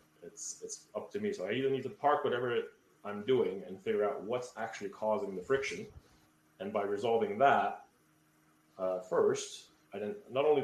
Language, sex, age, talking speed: English, male, 30-49, 180 wpm